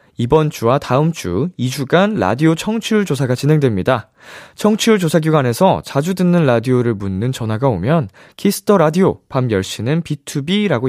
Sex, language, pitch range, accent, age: male, Korean, 110-165 Hz, native, 20-39